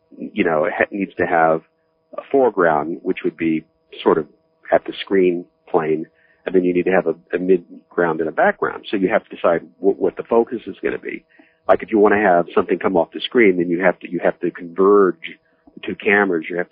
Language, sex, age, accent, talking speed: English, male, 50-69, American, 235 wpm